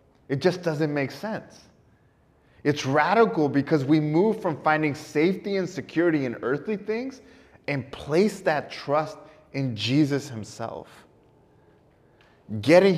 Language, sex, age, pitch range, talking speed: English, male, 20-39, 105-145 Hz, 120 wpm